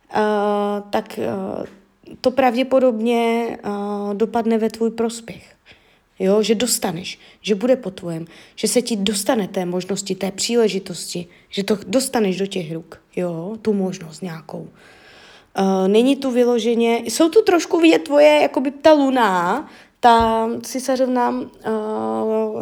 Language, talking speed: Czech, 140 wpm